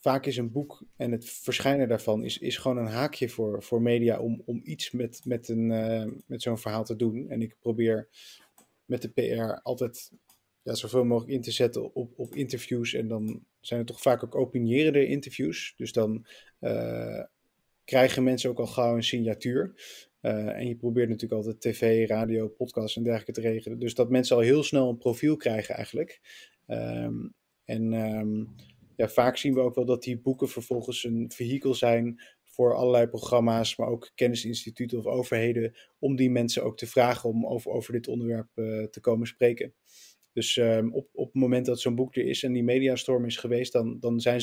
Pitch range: 115-125 Hz